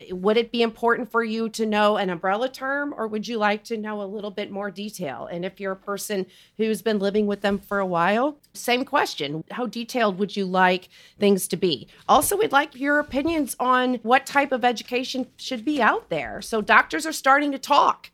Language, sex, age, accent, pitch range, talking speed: English, female, 40-59, American, 195-255 Hz, 215 wpm